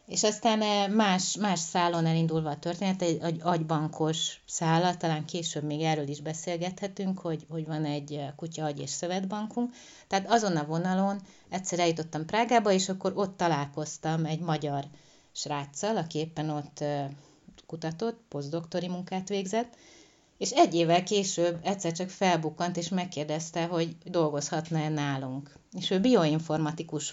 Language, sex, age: Hungarian, female, 30-49